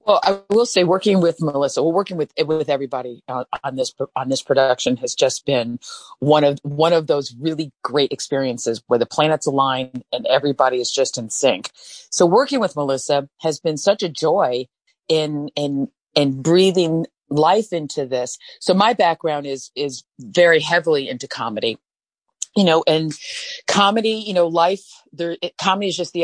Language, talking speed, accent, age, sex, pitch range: English, 175 wpm, American, 40-59, female, 140-175 Hz